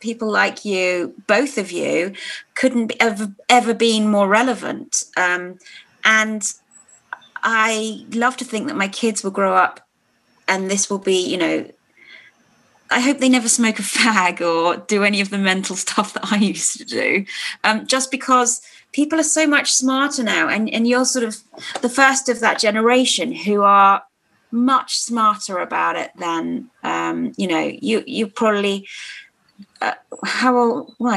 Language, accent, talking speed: English, British, 165 wpm